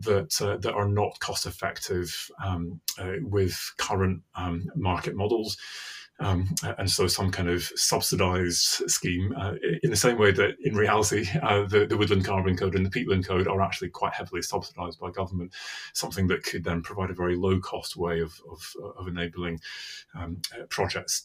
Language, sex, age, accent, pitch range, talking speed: English, male, 30-49, British, 85-95 Hz, 175 wpm